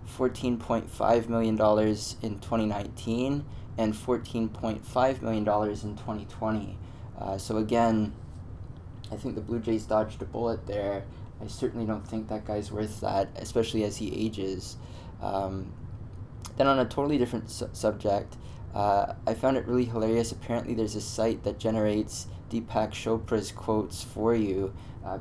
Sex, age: male, 20-39